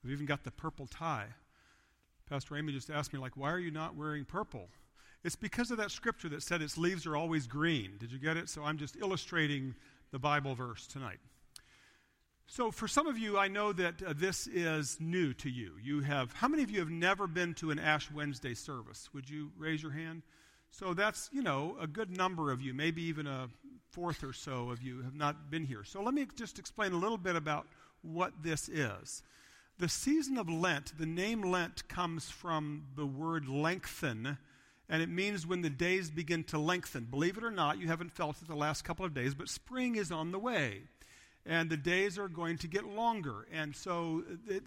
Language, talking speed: English, 215 wpm